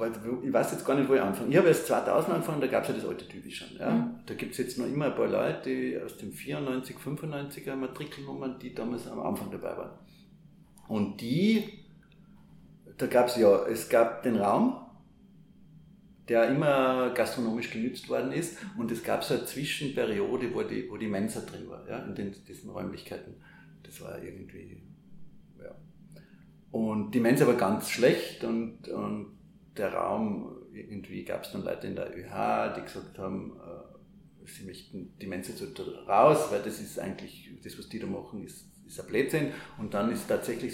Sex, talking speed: male, 180 wpm